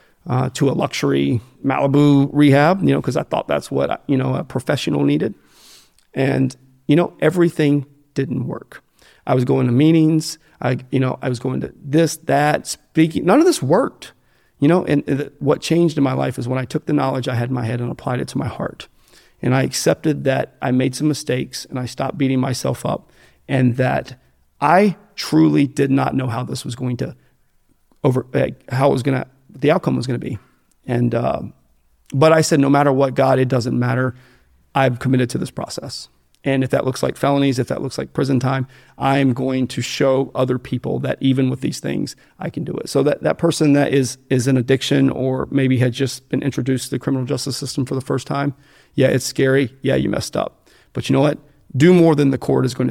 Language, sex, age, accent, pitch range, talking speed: English, male, 40-59, American, 130-145 Hz, 220 wpm